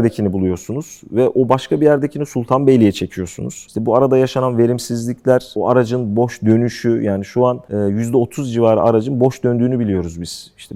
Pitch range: 105-130 Hz